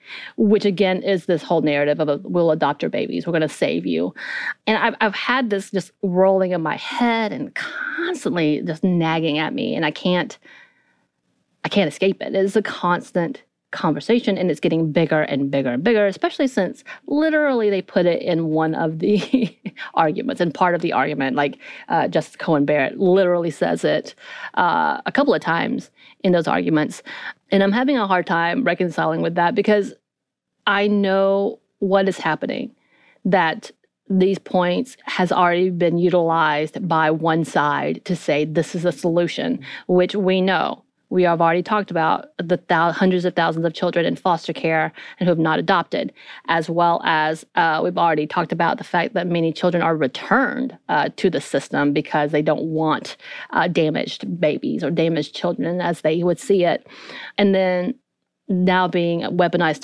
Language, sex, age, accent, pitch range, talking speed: English, female, 30-49, American, 165-205 Hz, 175 wpm